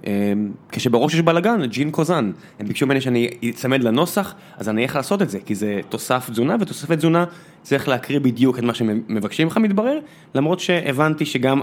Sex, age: male, 20-39